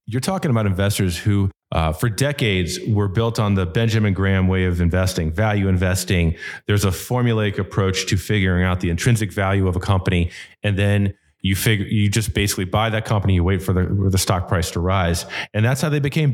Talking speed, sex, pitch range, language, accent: 210 wpm, male, 95-125 Hz, English, American